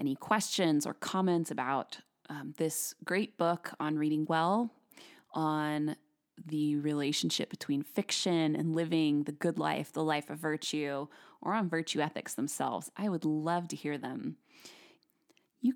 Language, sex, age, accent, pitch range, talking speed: English, female, 20-39, American, 150-185 Hz, 145 wpm